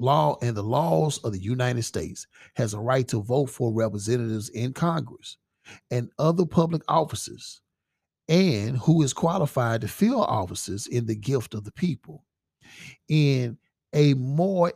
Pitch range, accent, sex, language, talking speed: 105-150 Hz, American, male, English, 150 wpm